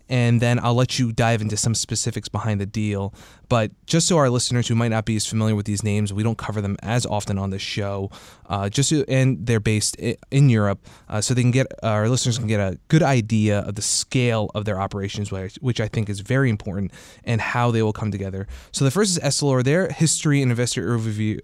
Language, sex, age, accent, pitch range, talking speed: English, male, 20-39, American, 105-130 Hz, 235 wpm